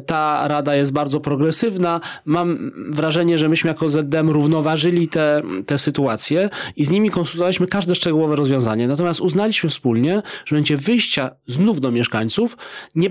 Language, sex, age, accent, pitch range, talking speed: Polish, male, 40-59, native, 125-165 Hz, 145 wpm